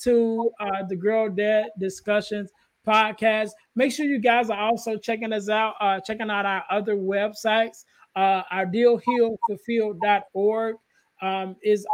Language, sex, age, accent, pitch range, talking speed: English, male, 20-39, American, 195-230 Hz, 140 wpm